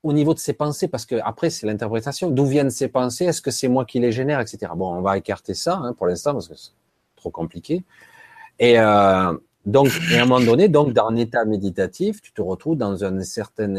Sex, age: male, 40-59